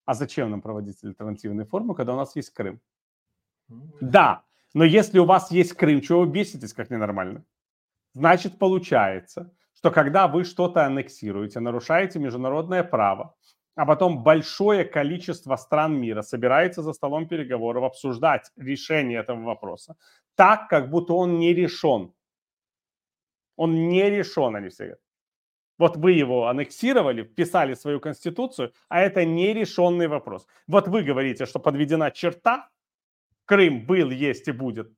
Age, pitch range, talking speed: 30-49, 125-175 Hz, 140 wpm